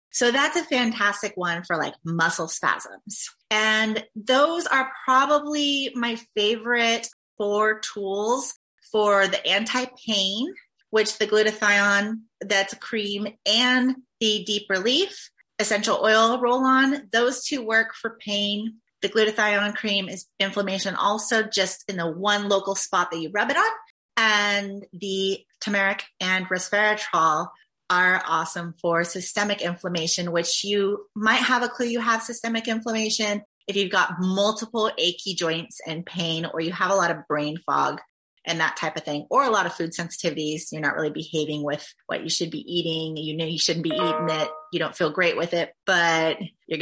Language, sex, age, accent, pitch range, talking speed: English, female, 30-49, American, 170-225 Hz, 165 wpm